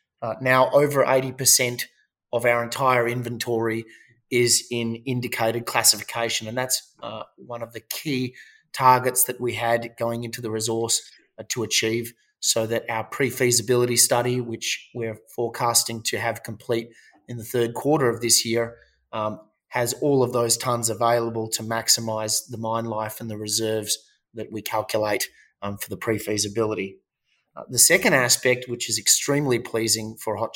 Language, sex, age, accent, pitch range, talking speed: English, male, 30-49, Australian, 115-125 Hz, 155 wpm